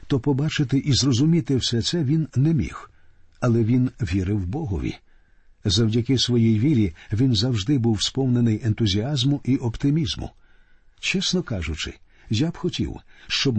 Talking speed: 130 wpm